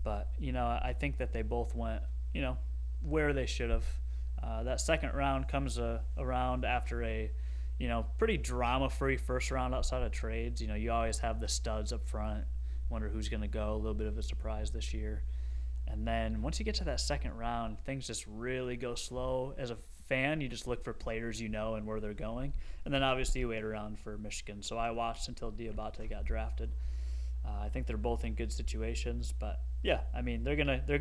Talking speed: 215 wpm